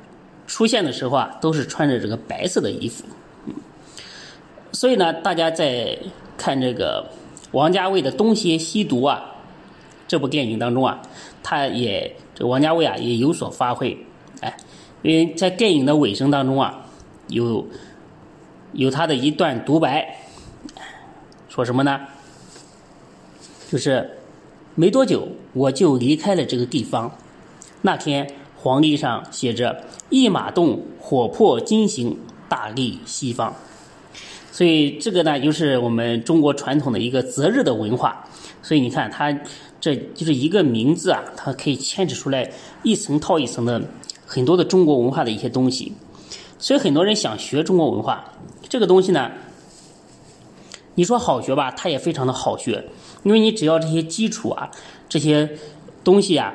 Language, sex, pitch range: Chinese, male, 135-185 Hz